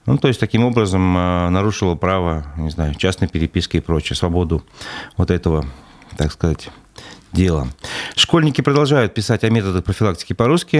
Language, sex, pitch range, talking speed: Russian, male, 95-130 Hz, 150 wpm